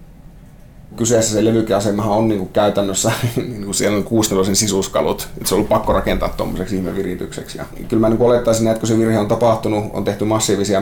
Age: 30-49